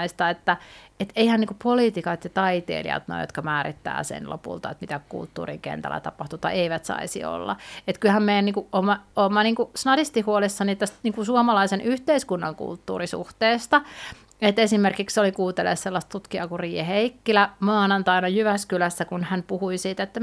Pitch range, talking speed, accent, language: 175-220 Hz, 160 wpm, native, Finnish